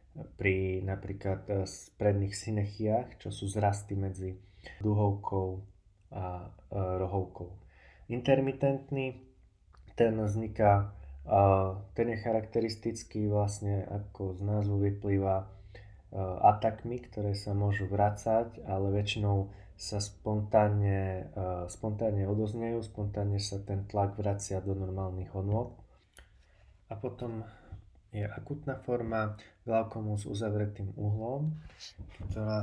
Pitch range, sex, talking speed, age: 100-110 Hz, male, 95 wpm, 20-39